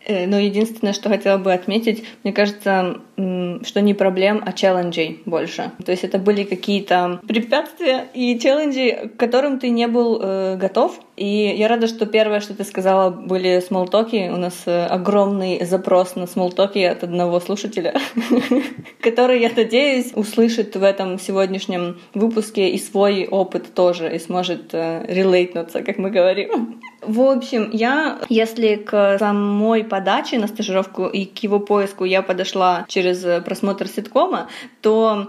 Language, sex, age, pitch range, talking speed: Russian, female, 20-39, 190-230 Hz, 145 wpm